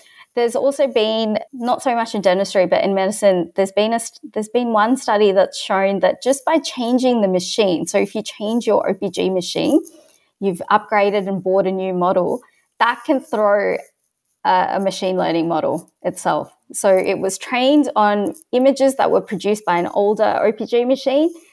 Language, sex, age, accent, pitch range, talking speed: English, female, 20-39, Australian, 195-240 Hz, 175 wpm